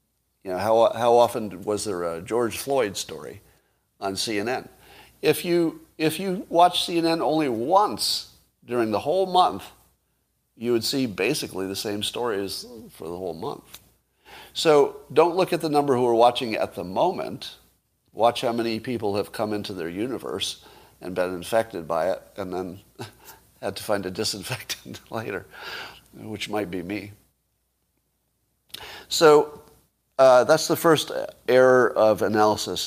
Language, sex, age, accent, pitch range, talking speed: English, male, 50-69, American, 100-140 Hz, 150 wpm